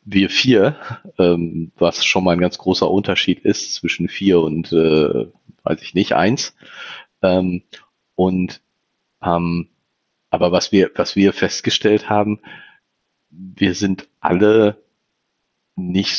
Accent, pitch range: German, 85-95 Hz